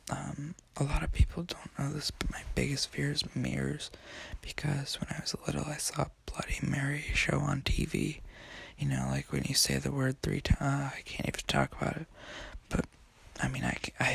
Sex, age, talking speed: male, 20-39, 205 wpm